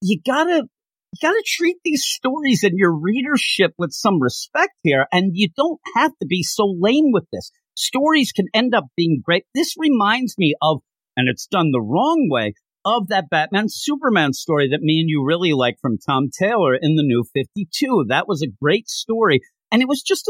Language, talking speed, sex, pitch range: English, 205 wpm, male, 150-245 Hz